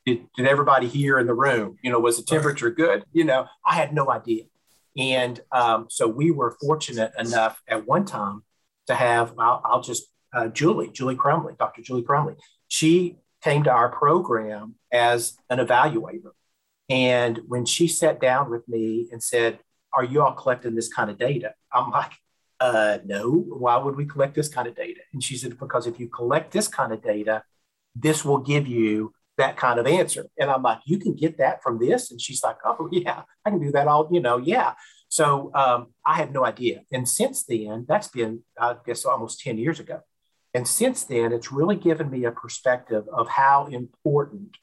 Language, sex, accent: English, male, American